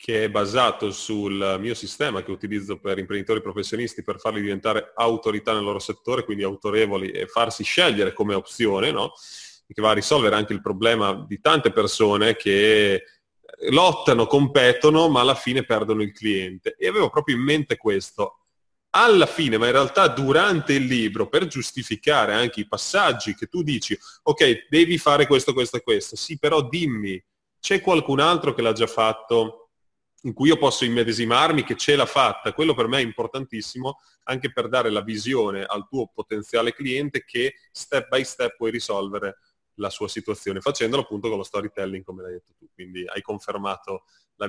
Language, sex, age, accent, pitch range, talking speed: Italian, male, 30-49, native, 105-155 Hz, 175 wpm